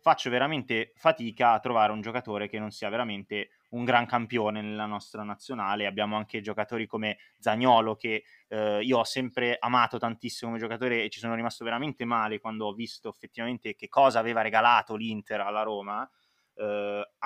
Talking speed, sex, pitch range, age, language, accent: 170 wpm, male, 110-125 Hz, 20-39, Italian, native